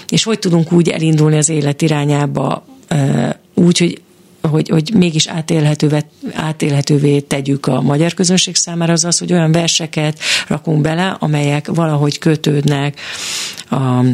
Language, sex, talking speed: Hungarian, female, 130 wpm